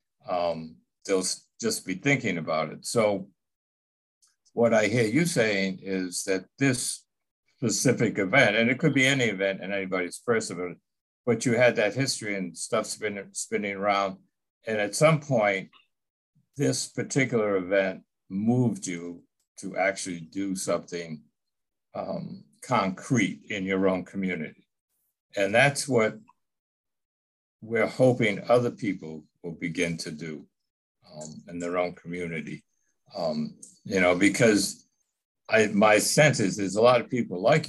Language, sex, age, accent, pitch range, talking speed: English, male, 60-79, American, 90-115 Hz, 135 wpm